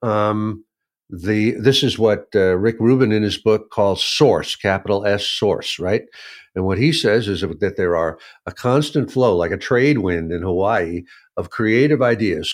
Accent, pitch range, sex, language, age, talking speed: American, 105-135 Hz, male, English, 60-79, 175 wpm